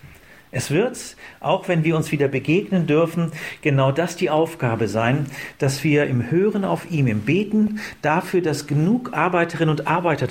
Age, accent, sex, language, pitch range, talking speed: 40-59, German, male, German, 115-155 Hz, 165 wpm